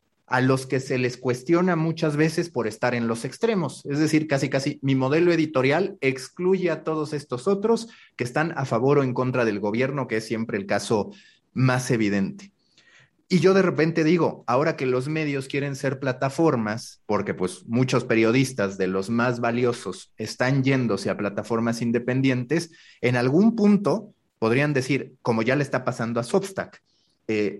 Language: Spanish